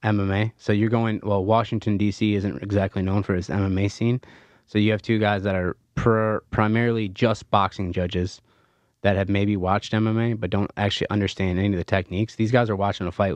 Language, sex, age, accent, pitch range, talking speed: English, male, 20-39, American, 95-110 Hz, 200 wpm